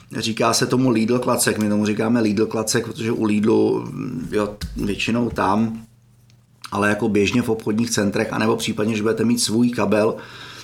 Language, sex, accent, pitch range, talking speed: Czech, male, native, 110-125 Hz, 165 wpm